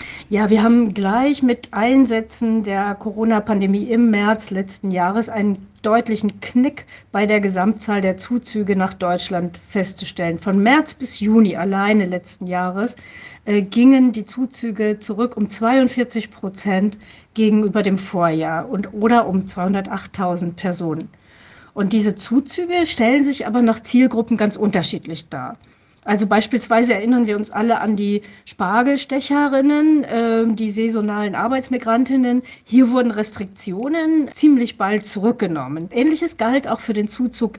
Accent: German